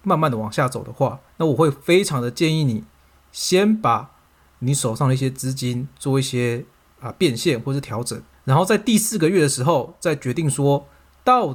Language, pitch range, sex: Chinese, 120-160 Hz, male